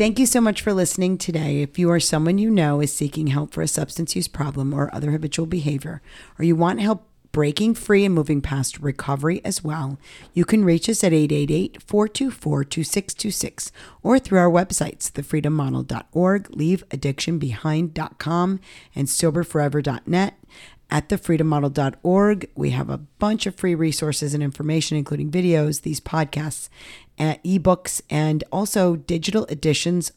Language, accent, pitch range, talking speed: English, American, 145-175 Hz, 140 wpm